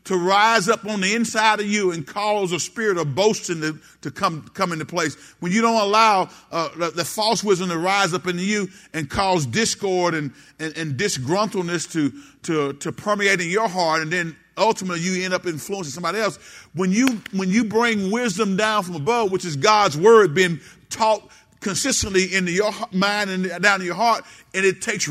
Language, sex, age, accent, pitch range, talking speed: English, male, 50-69, American, 175-220 Hz, 200 wpm